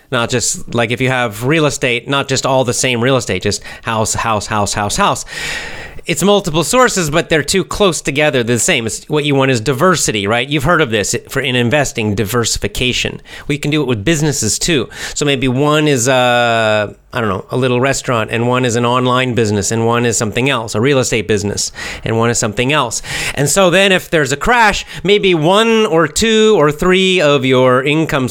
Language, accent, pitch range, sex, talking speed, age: English, American, 120-160 Hz, male, 210 wpm, 30-49